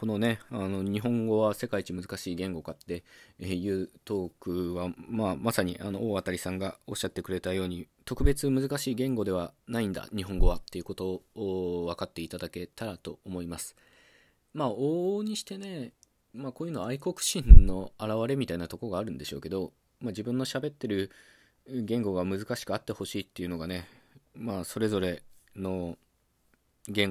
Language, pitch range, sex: Japanese, 90-120 Hz, male